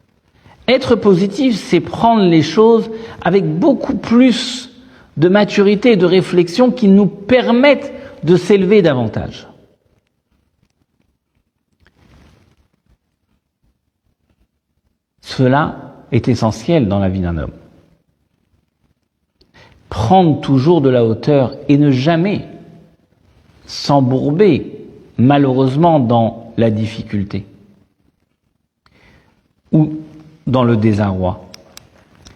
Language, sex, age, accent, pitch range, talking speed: French, male, 60-79, French, 115-190 Hz, 80 wpm